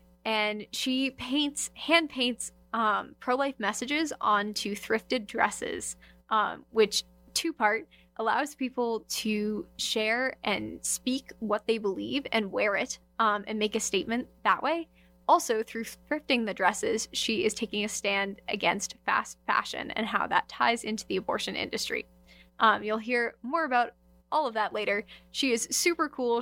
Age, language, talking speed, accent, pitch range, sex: 10-29, English, 150 wpm, American, 205-245 Hz, female